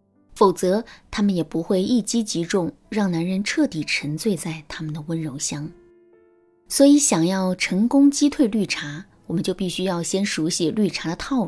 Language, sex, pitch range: Chinese, female, 170-255 Hz